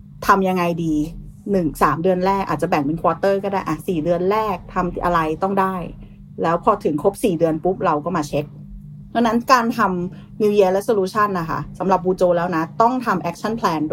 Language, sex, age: Thai, female, 30-49